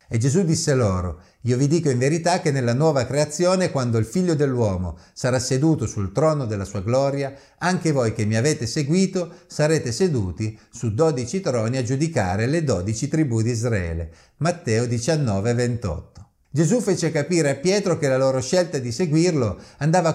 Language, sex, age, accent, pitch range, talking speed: Italian, male, 50-69, native, 110-160 Hz, 170 wpm